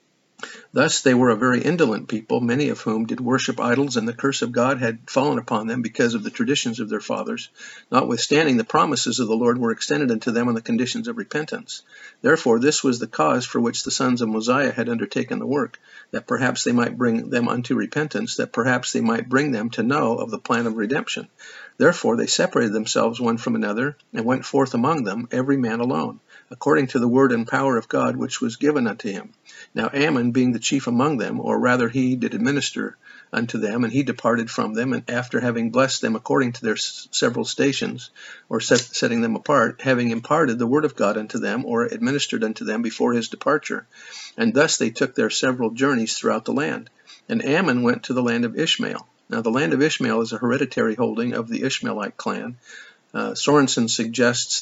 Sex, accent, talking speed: male, American, 210 wpm